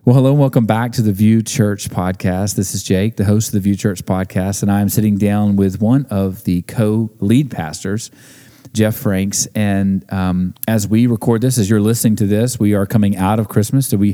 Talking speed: 220 wpm